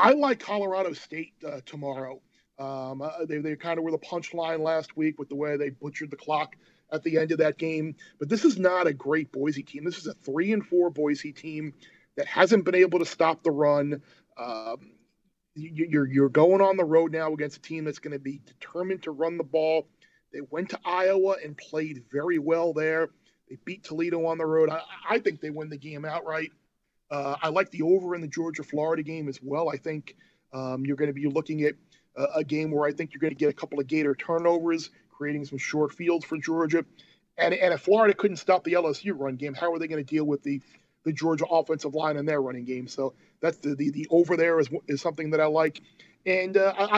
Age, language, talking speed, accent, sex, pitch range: 40-59, English, 225 wpm, American, male, 150-180 Hz